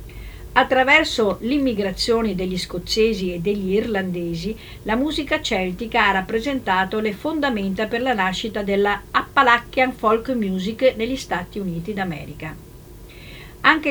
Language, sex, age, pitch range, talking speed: Italian, female, 50-69, 175-245 Hz, 110 wpm